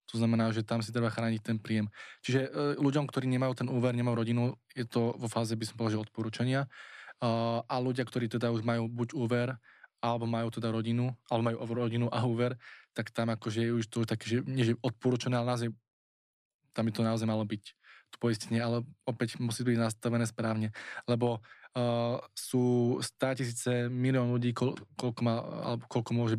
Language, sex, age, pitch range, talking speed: Slovak, male, 20-39, 115-120 Hz, 175 wpm